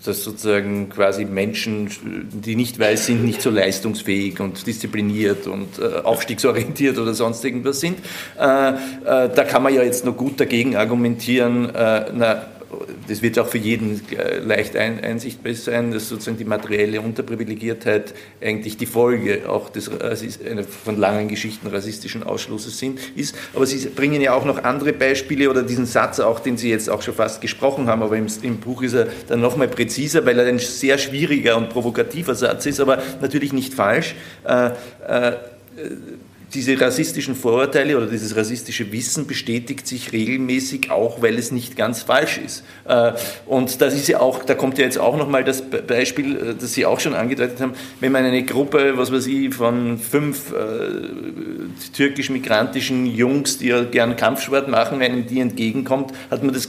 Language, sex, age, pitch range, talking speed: German, male, 50-69, 115-135 Hz, 175 wpm